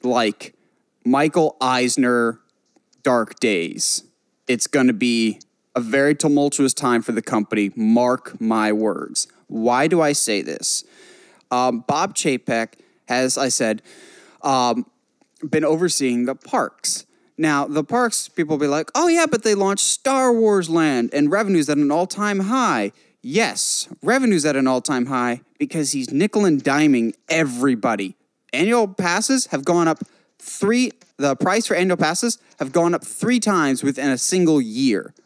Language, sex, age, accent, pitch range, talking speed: English, male, 30-49, American, 135-215 Hz, 150 wpm